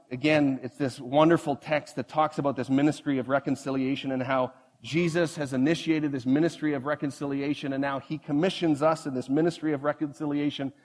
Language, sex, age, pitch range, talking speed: English, male, 40-59, 140-170 Hz, 170 wpm